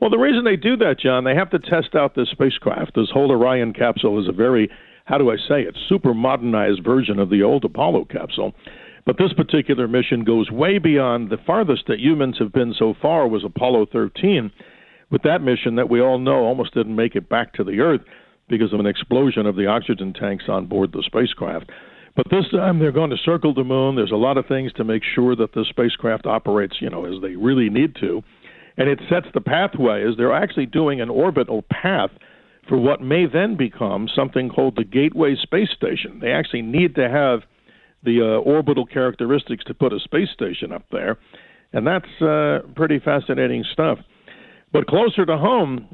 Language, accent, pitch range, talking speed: English, American, 110-150 Hz, 205 wpm